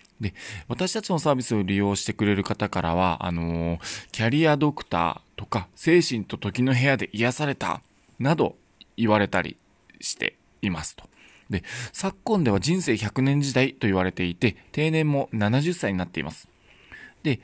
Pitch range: 95-155 Hz